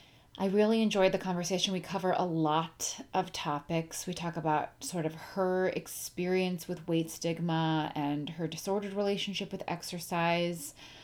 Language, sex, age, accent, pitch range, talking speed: English, female, 30-49, American, 160-200 Hz, 145 wpm